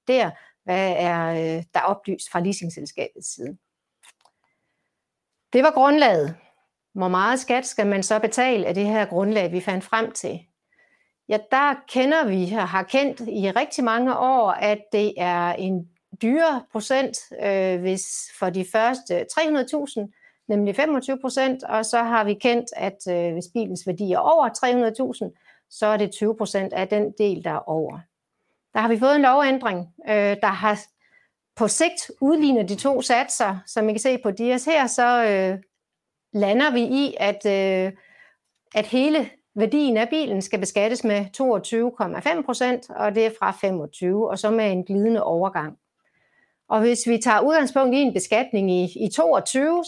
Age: 60-79